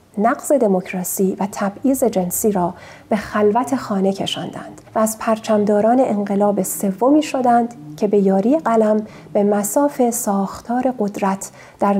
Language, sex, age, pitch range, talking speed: Persian, female, 40-59, 200-250 Hz, 125 wpm